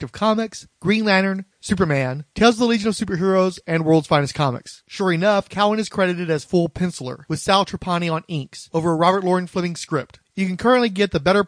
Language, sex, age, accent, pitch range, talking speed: English, male, 30-49, American, 155-205 Hz, 210 wpm